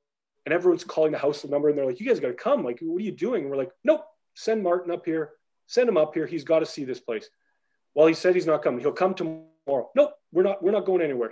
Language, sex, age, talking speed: English, male, 30-49, 265 wpm